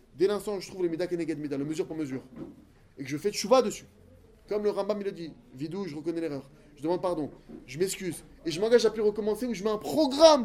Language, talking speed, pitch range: French, 255 wpm, 175-225 Hz